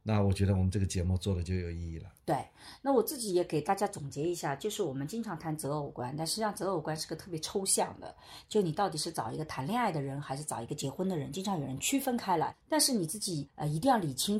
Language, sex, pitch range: Chinese, female, 140-200 Hz